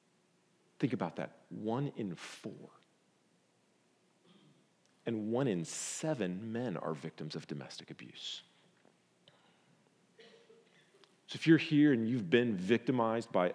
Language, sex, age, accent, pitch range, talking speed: English, male, 40-59, American, 110-140 Hz, 110 wpm